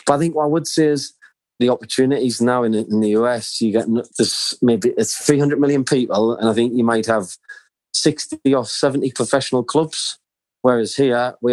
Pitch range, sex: 110-135 Hz, male